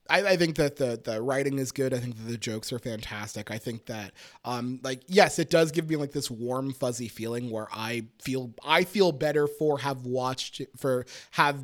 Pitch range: 125-175 Hz